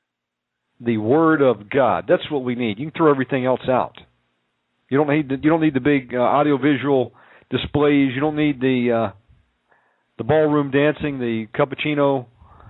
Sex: male